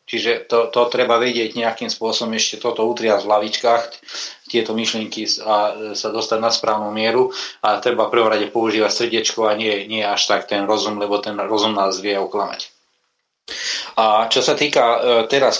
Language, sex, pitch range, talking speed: Slovak, male, 110-120 Hz, 170 wpm